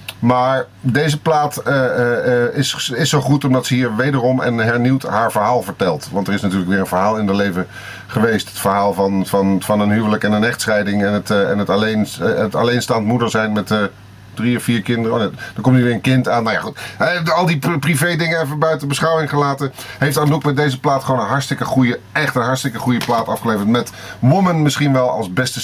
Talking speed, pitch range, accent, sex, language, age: 225 wpm, 110-145 Hz, Dutch, male, Dutch, 40-59